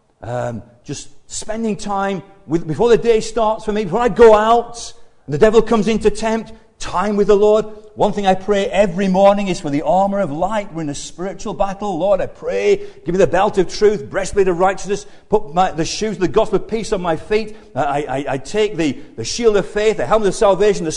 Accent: British